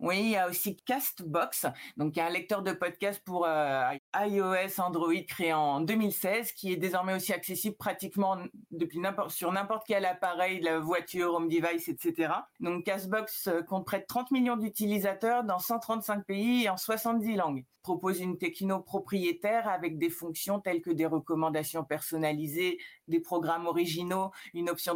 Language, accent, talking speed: French, French, 165 wpm